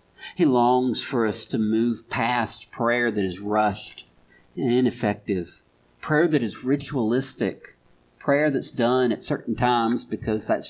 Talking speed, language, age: 140 wpm, English, 50-69